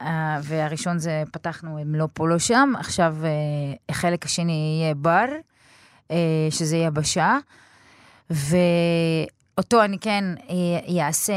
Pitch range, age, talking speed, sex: 150-185 Hz, 30-49, 115 wpm, female